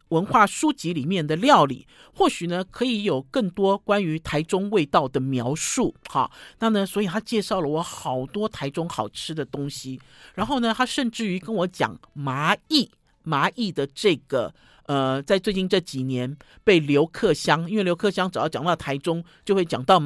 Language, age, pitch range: Chinese, 50-69, 145-200 Hz